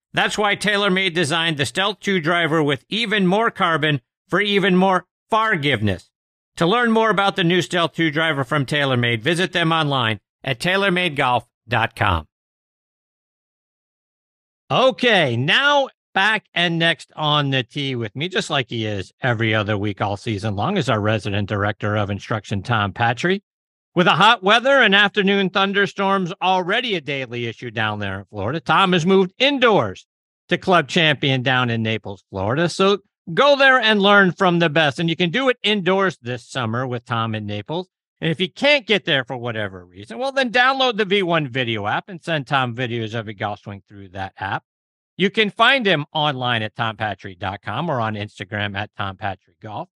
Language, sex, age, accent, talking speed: English, male, 50-69, American, 175 wpm